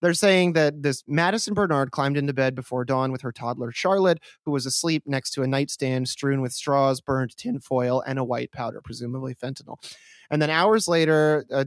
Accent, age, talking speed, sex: American, 30-49, 205 wpm, male